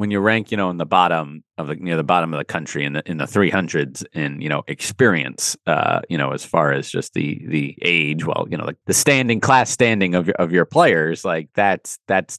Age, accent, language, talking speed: 30-49, American, English, 250 wpm